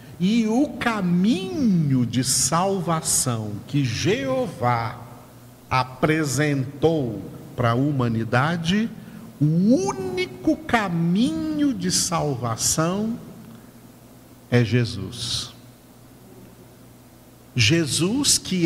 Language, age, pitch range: Portuguese, 50-69, 125-175 Hz